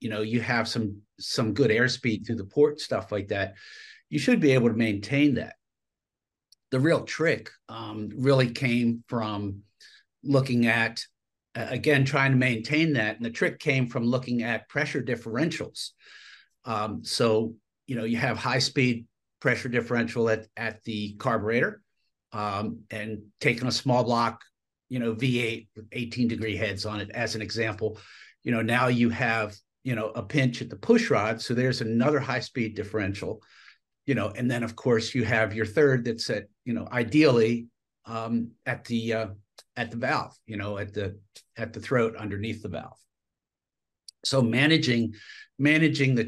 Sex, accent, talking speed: male, American, 170 wpm